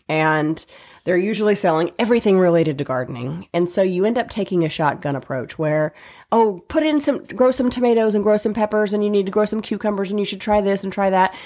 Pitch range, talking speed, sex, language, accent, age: 165-215 Hz, 230 wpm, female, English, American, 30-49